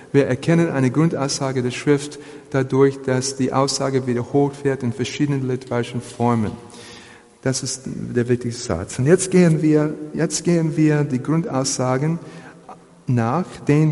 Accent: German